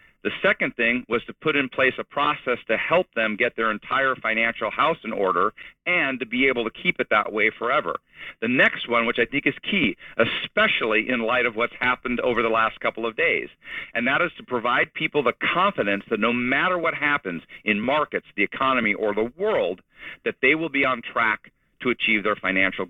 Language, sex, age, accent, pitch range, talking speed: English, male, 50-69, American, 115-145 Hz, 210 wpm